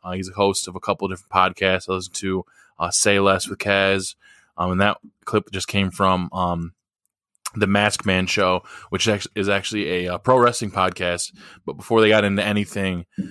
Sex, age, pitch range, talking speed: male, 20-39, 95-105 Hz, 200 wpm